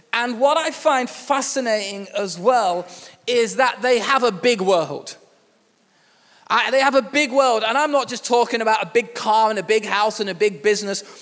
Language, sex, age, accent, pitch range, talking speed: English, male, 20-39, British, 215-260 Hz, 200 wpm